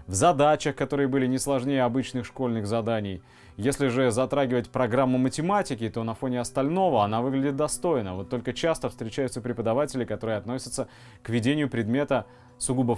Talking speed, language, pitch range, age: 150 wpm, Russian, 110-145 Hz, 20-39